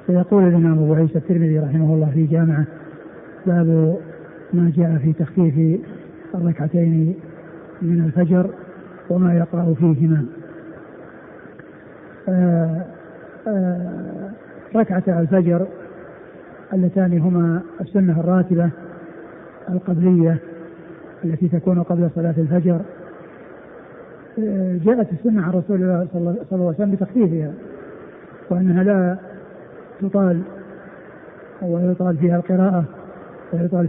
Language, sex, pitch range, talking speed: Arabic, male, 170-185 Hz, 90 wpm